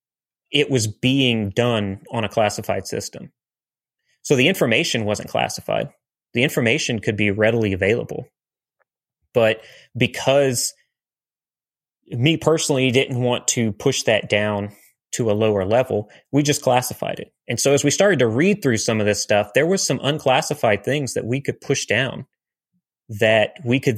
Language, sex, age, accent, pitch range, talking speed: English, male, 30-49, American, 110-140 Hz, 155 wpm